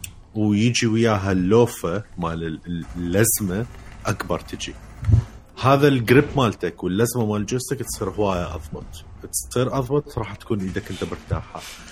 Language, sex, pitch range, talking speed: Arabic, male, 90-120 Hz, 115 wpm